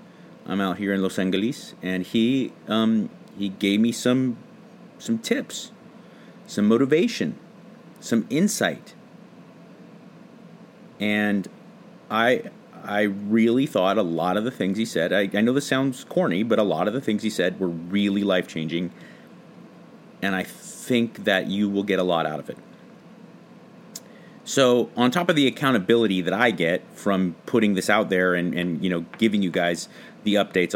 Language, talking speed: English, 160 wpm